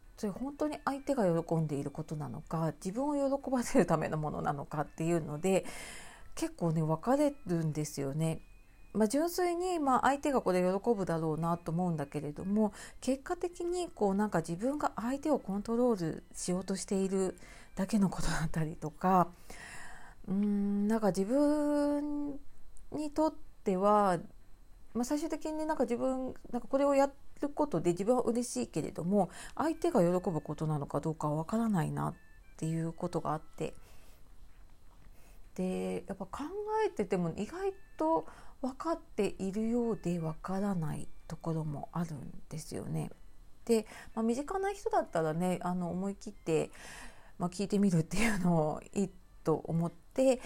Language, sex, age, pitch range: Japanese, female, 40-59, 160-255 Hz